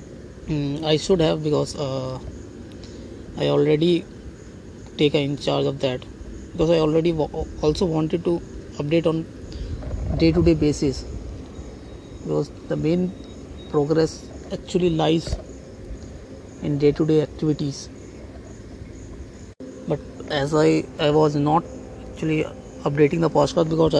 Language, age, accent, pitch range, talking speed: English, 20-39, Indian, 105-160 Hz, 110 wpm